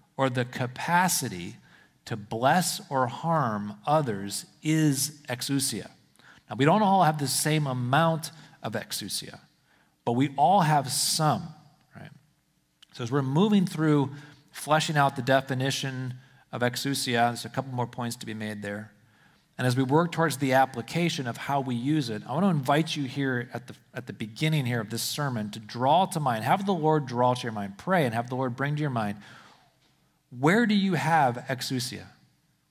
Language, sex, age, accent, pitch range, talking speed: English, male, 40-59, American, 125-155 Hz, 175 wpm